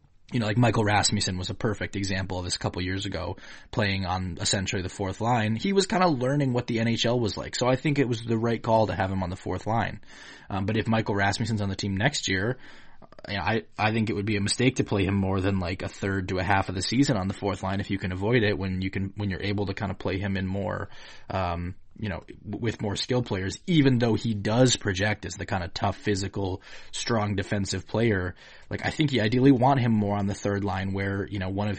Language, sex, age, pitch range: English, male, 20-39, 100-125 Hz